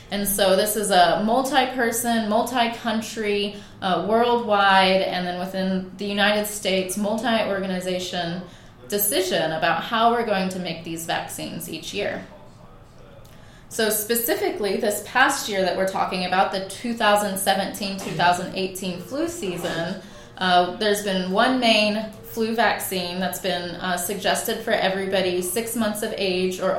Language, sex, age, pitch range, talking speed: English, female, 20-39, 180-215 Hz, 130 wpm